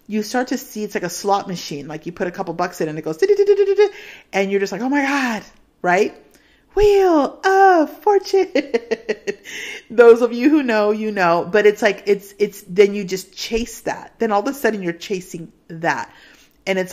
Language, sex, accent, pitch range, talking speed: English, female, American, 170-215 Hz, 200 wpm